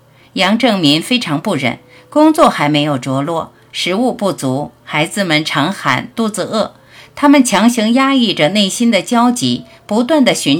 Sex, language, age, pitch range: female, Chinese, 50-69, 140-235 Hz